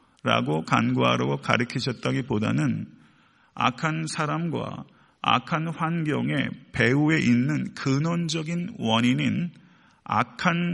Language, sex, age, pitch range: Korean, male, 40-59, 125-150 Hz